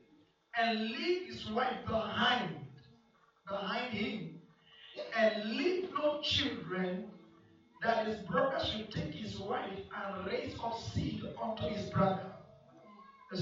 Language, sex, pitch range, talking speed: English, male, 205-285 Hz, 110 wpm